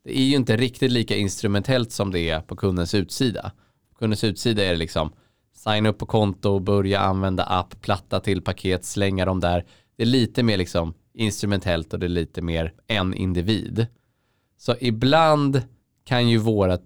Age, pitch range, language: 20-39, 95-125 Hz, Swedish